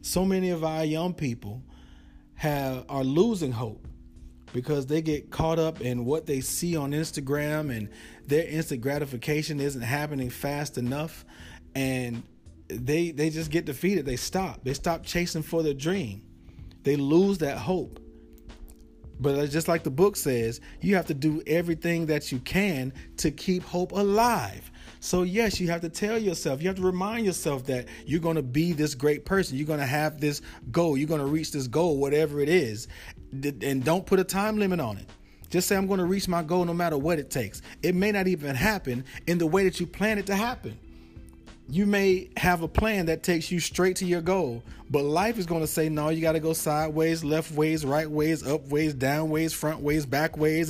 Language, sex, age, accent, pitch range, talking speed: English, male, 40-59, American, 125-175 Hz, 200 wpm